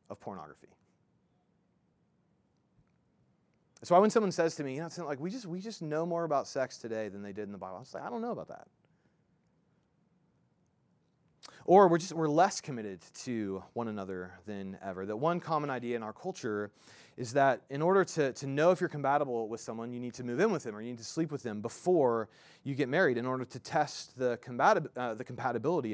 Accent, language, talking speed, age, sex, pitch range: American, English, 210 wpm, 30-49, male, 115-155 Hz